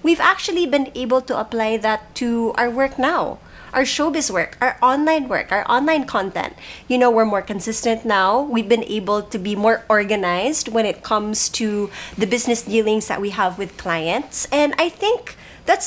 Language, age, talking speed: English, 20-39, 185 wpm